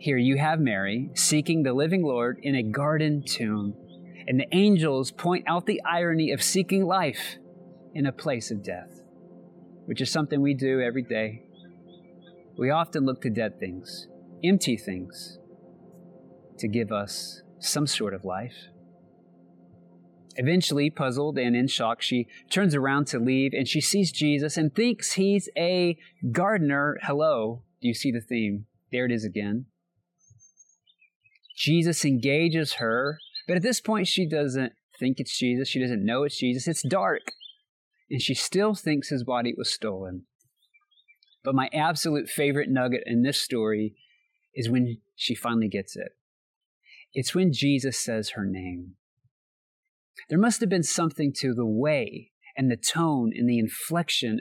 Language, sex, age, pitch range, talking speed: English, male, 30-49, 110-160 Hz, 155 wpm